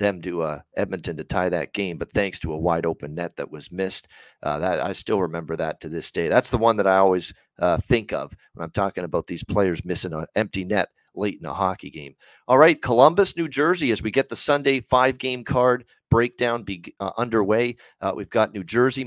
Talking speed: 230 wpm